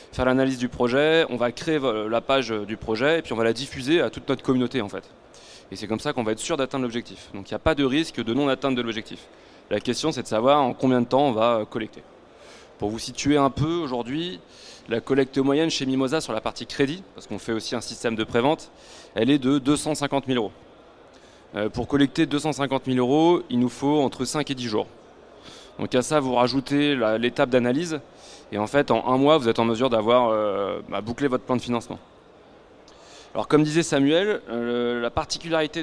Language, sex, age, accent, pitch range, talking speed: French, male, 20-39, French, 120-145 Hz, 220 wpm